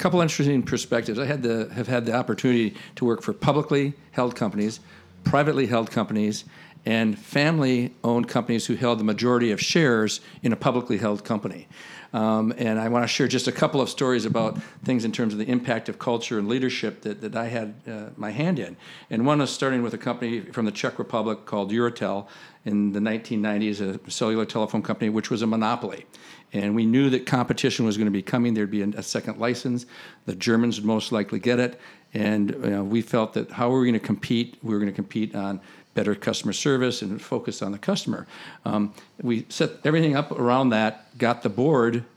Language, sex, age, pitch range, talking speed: English, male, 50-69, 110-130 Hz, 210 wpm